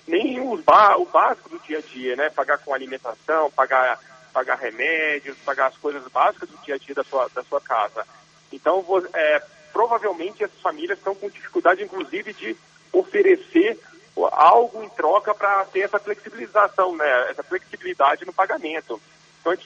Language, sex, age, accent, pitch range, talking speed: Portuguese, male, 40-59, Brazilian, 150-205 Hz, 160 wpm